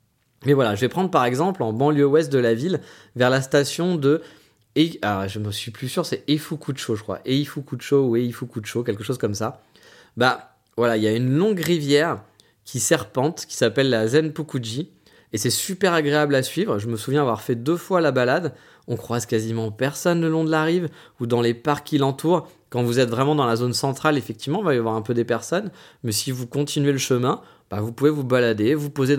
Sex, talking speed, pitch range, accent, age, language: male, 225 wpm, 115-155 Hz, French, 20-39, French